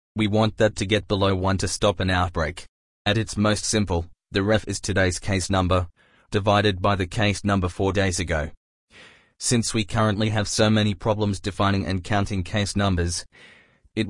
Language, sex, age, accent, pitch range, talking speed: English, male, 20-39, Australian, 95-105 Hz, 180 wpm